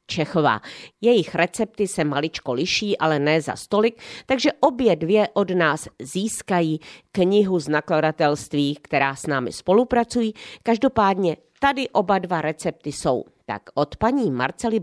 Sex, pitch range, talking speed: female, 150-220 Hz, 135 wpm